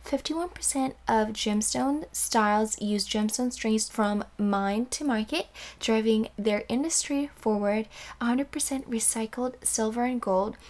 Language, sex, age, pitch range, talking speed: English, female, 10-29, 215-245 Hz, 110 wpm